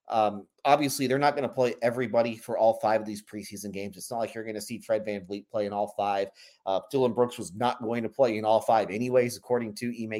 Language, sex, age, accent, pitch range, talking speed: English, male, 30-49, American, 105-125 Hz, 260 wpm